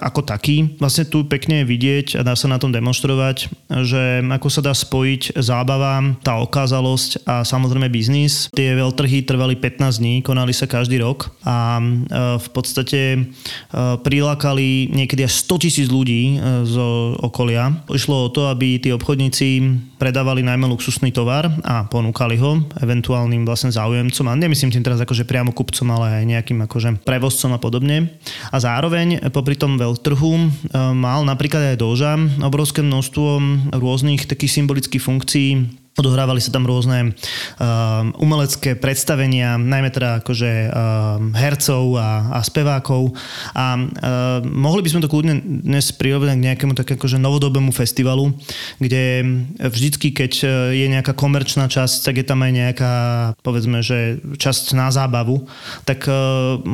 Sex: male